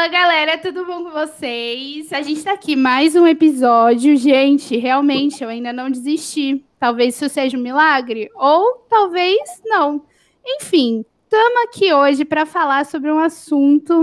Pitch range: 275-355 Hz